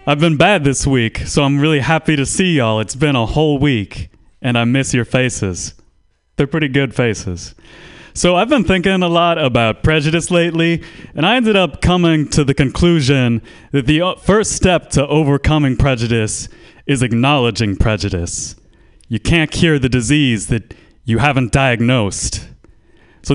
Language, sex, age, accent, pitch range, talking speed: English, male, 30-49, American, 115-155 Hz, 160 wpm